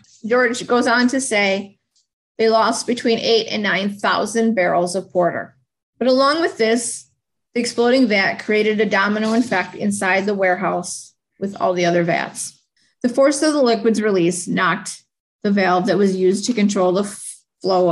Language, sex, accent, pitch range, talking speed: English, female, American, 185-235 Hz, 165 wpm